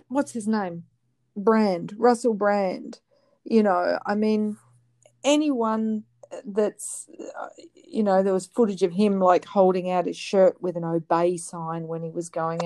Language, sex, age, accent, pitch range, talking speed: English, female, 40-59, Australian, 175-215 Hz, 150 wpm